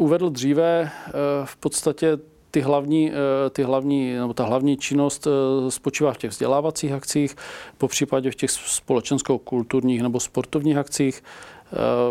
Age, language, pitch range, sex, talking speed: 40-59, Czech, 125-145 Hz, male, 100 wpm